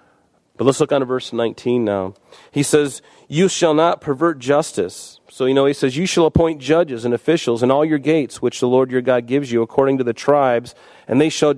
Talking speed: 230 wpm